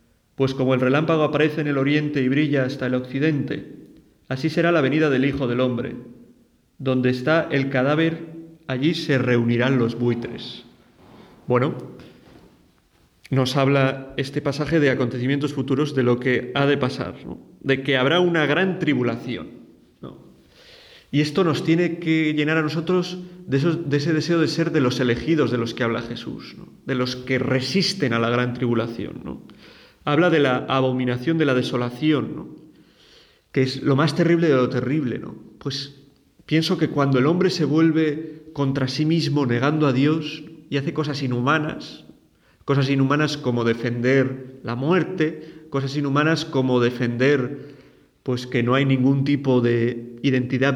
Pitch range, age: 125-155 Hz, 40-59